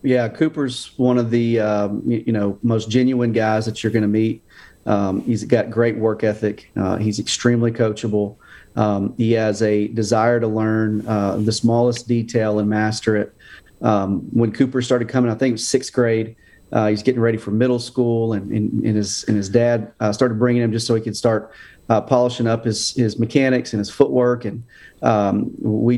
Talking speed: 195 wpm